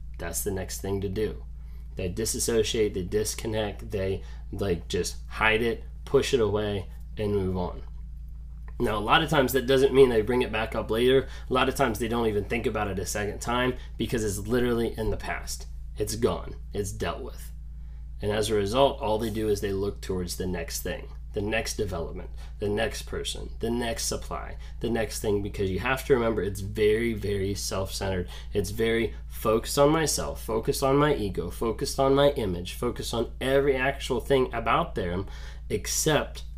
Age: 20-39